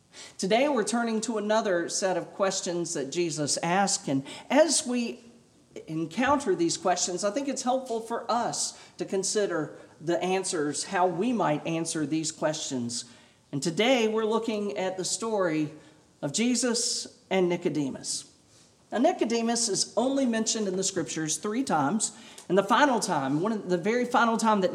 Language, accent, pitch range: English, American, 150-210 Hz